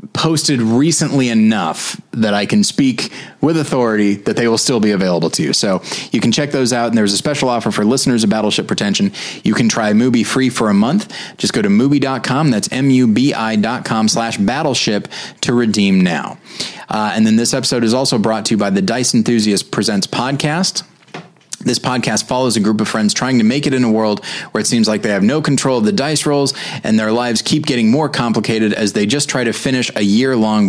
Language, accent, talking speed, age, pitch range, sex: English, American, 215 wpm, 30-49, 110-145 Hz, male